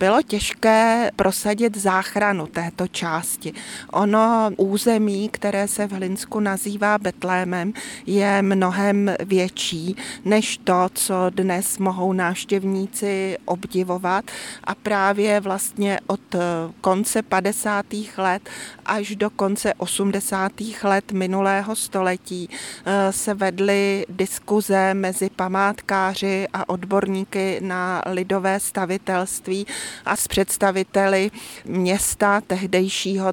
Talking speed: 95 wpm